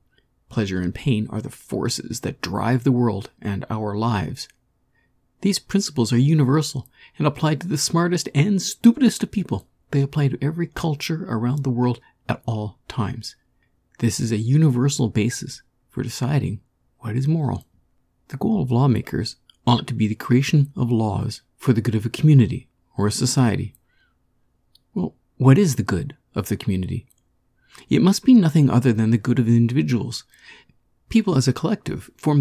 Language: English